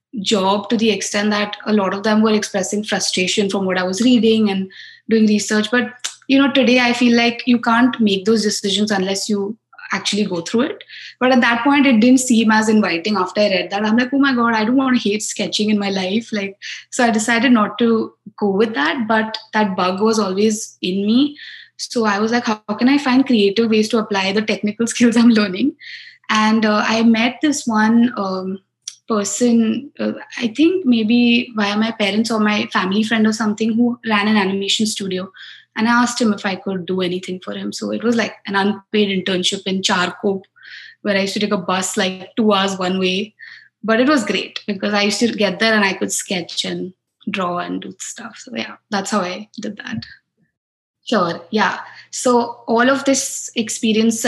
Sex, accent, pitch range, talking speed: female, Indian, 200-235 Hz, 210 wpm